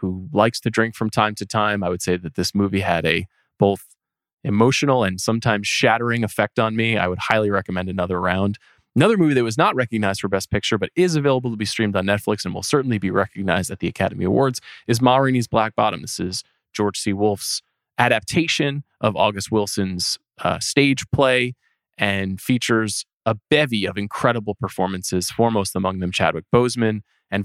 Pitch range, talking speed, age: 95-115 Hz, 190 wpm, 20-39